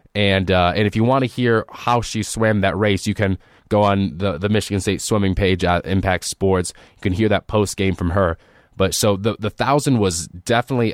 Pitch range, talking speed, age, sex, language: 95-110 Hz, 225 wpm, 20-39, male, English